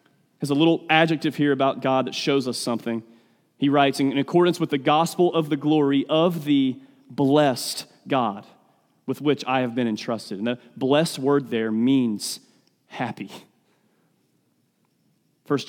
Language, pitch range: English, 130-165 Hz